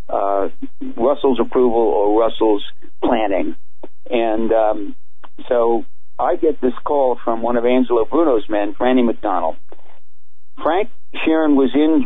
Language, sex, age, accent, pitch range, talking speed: English, male, 50-69, American, 115-160 Hz, 125 wpm